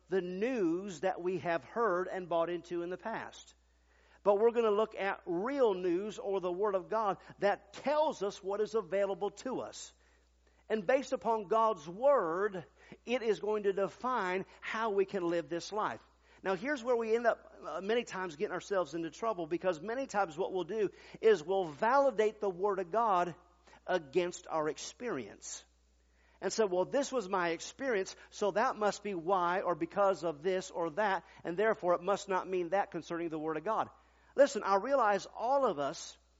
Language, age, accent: English, 50-69, American